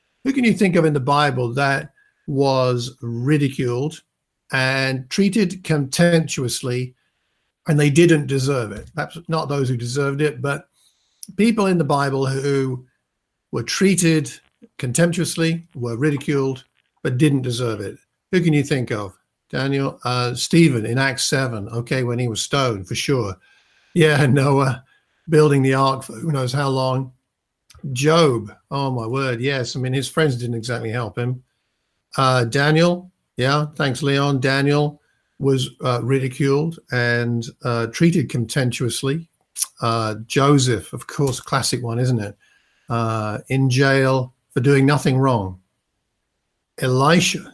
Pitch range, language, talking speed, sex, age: 120-150 Hz, English, 140 wpm, male, 50-69